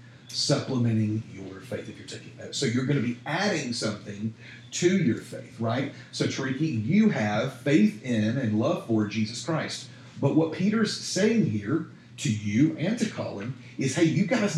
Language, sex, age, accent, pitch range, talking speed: English, male, 40-59, American, 120-155 Hz, 175 wpm